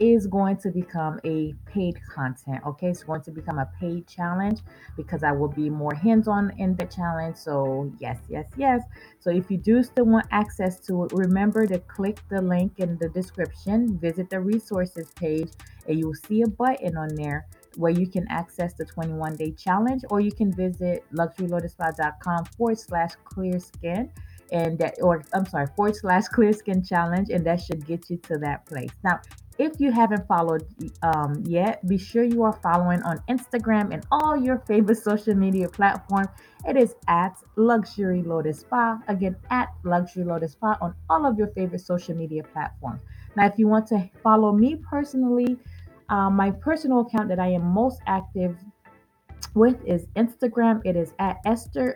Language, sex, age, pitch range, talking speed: English, female, 20-39, 170-220 Hz, 180 wpm